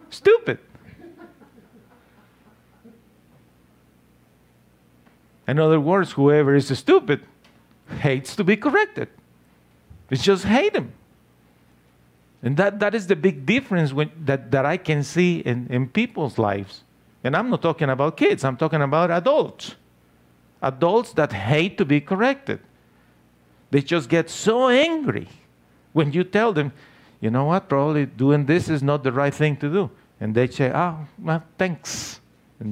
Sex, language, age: male, English, 50-69